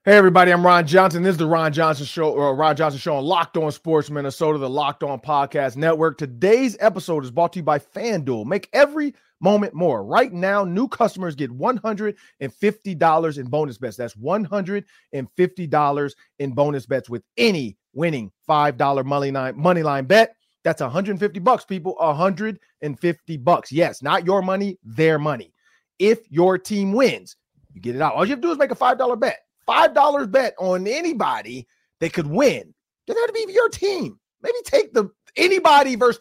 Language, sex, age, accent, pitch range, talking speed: English, male, 30-49, American, 150-210 Hz, 175 wpm